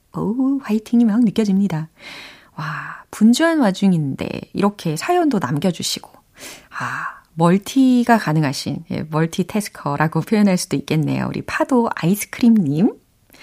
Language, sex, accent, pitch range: Korean, female, native, 170-265 Hz